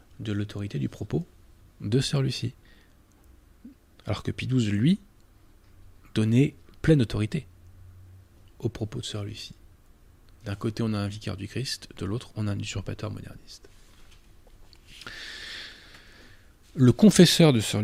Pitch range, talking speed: 95-125 Hz, 130 wpm